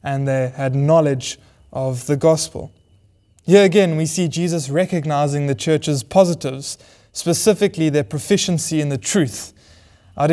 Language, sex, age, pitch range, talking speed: English, male, 20-39, 130-165 Hz, 135 wpm